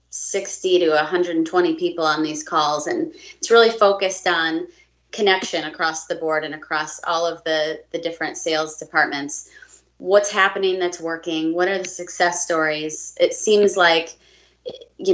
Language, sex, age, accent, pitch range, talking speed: English, female, 30-49, American, 160-190 Hz, 150 wpm